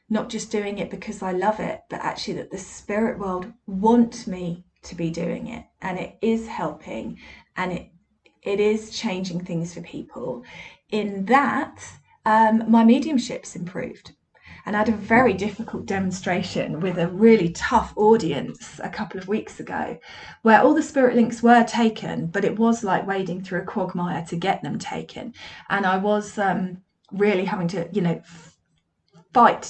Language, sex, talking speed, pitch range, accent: English, female, 170 wpm, 185-220 Hz, British